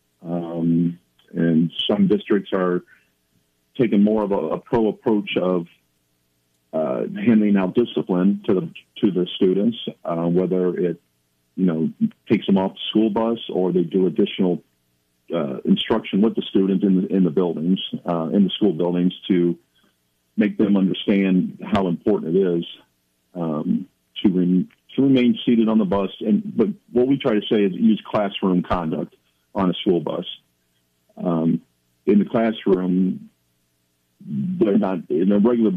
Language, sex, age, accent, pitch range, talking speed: English, male, 50-69, American, 85-105 Hz, 155 wpm